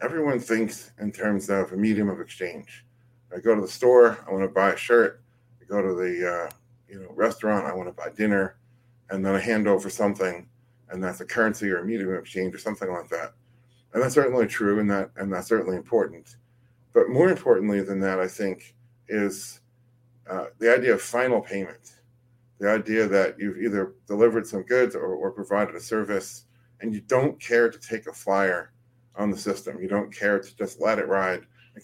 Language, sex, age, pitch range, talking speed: English, male, 40-59, 100-120 Hz, 205 wpm